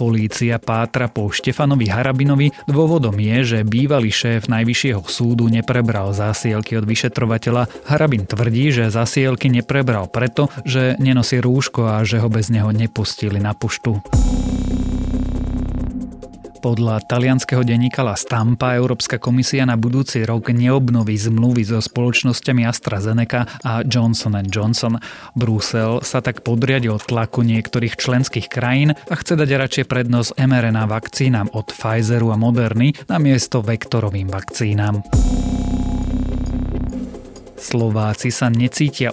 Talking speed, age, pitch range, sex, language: 115 wpm, 30-49, 110-130 Hz, male, Slovak